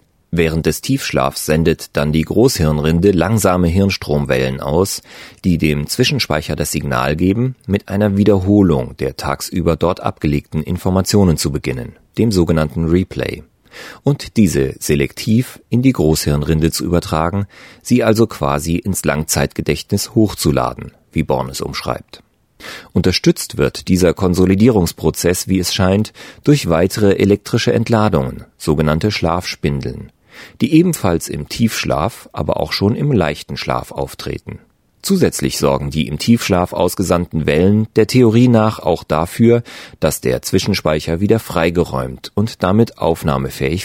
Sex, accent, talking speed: male, German, 125 wpm